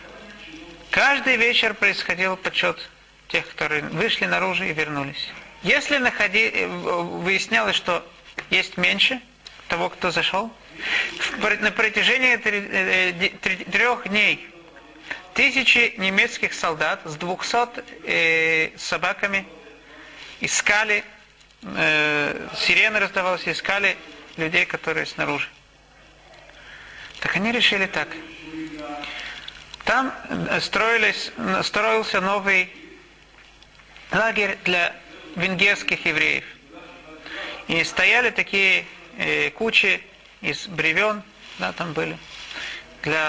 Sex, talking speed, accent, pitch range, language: male, 80 wpm, native, 165-215 Hz, Russian